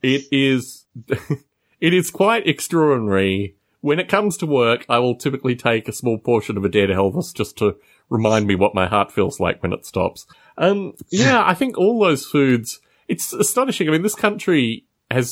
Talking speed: 190 wpm